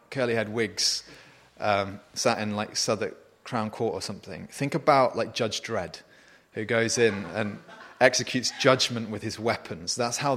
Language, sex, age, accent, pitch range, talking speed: English, male, 30-49, British, 110-145 Hz, 155 wpm